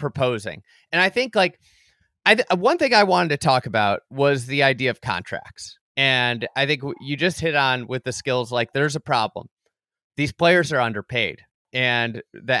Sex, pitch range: male, 130-175 Hz